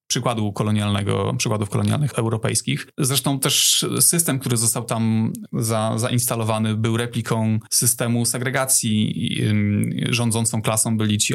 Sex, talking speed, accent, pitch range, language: male, 110 wpm, native, 110-130 Hz, Polish